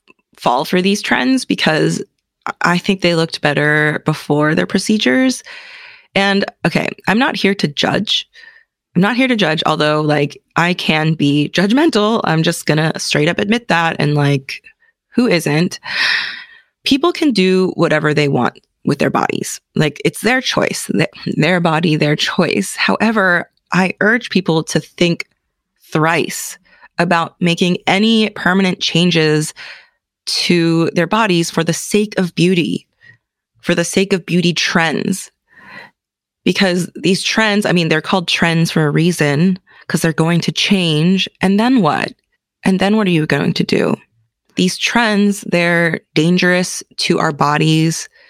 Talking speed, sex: 150 wpm, female